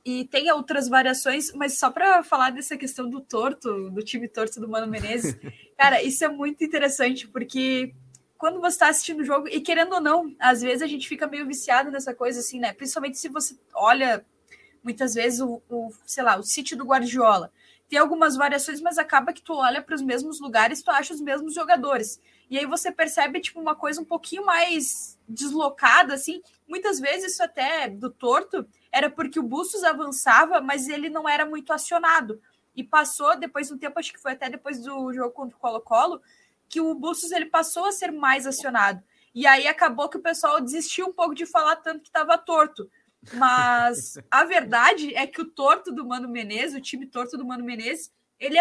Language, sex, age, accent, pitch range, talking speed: Portuguese, female, 10-29, Brazilian, 255-320 Hz, 200 wpm